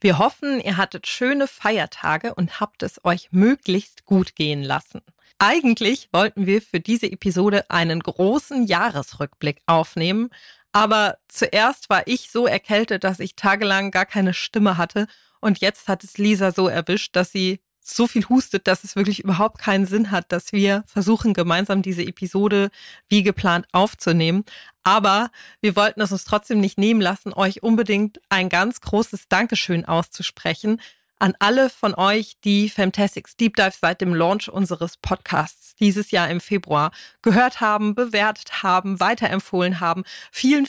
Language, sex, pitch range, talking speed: German, female, 185-225 Hz, 155 wpm